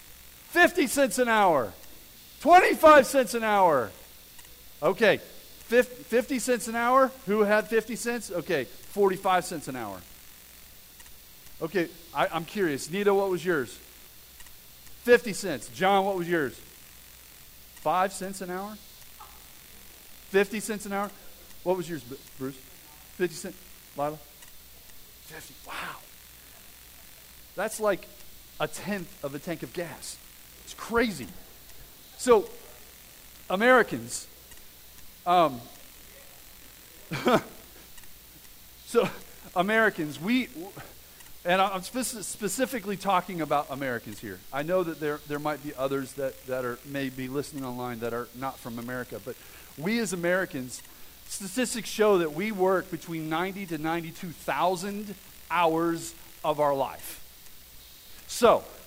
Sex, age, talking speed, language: male, 40-59, 120 wpm, English